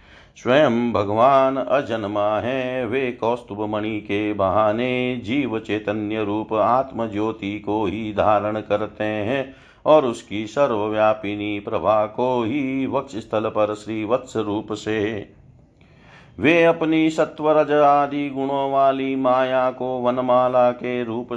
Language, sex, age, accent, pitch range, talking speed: Hindi, male, 50-69, native, 105-130 Hz, 115 wpm